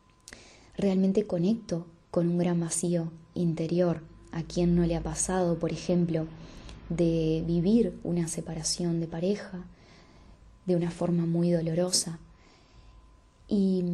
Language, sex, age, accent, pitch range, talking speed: Spanish, female, 20-39, Argentinian, 165-190 Hz, 115 wpm